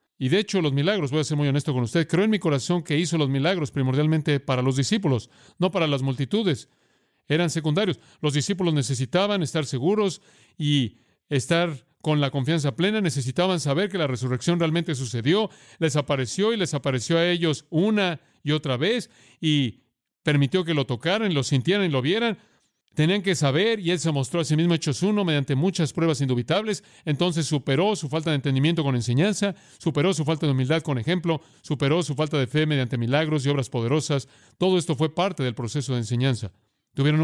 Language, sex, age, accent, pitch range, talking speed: English, male, 40-59, Mexican, 130-170 Hz, 190 wpm